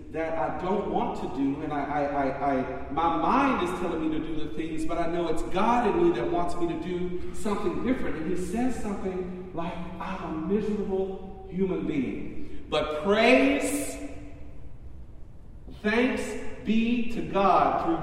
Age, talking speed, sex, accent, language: 50-69, 170 wpm, male, American, English